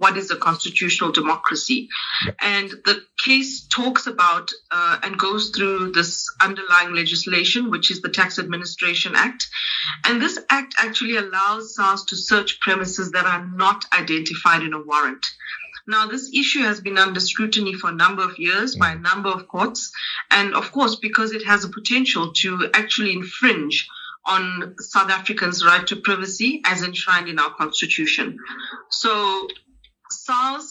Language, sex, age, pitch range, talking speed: English, female, 30-49, 180-225 Hz, 155 wpm